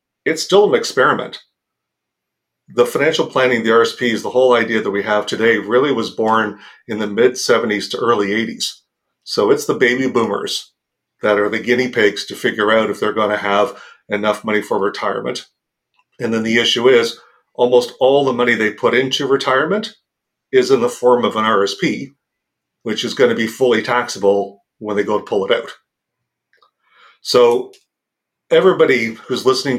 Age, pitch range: 40-59, 105-130 Hz